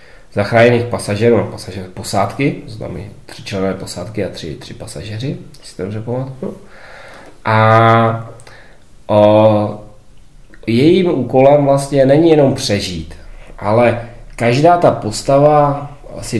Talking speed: 105 wpm